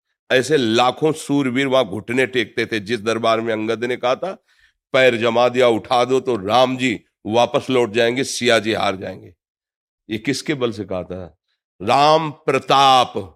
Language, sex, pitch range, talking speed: Hindi, male, 115-150 Hz, 160 wpm